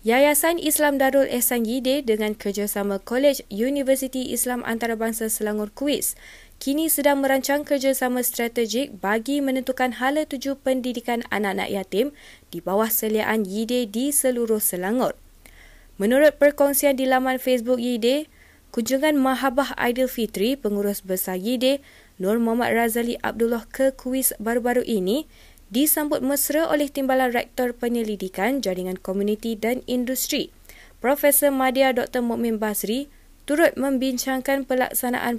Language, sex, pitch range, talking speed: Malay, female, 220-270 Hz, 120 wpm